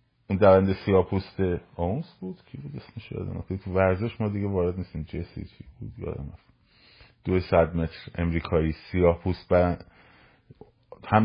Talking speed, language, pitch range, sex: 145 wpm, Persian, 95-120 Hz, male